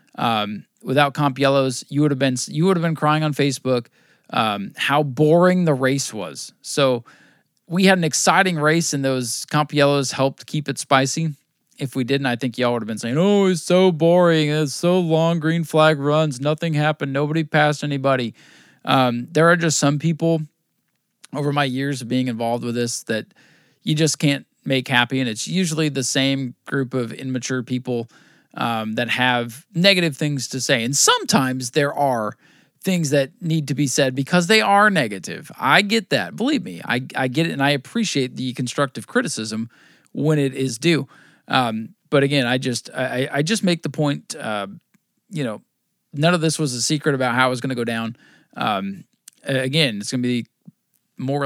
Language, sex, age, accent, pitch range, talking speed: English, male, 20-39, American, 130-155 Hz, 190 wpm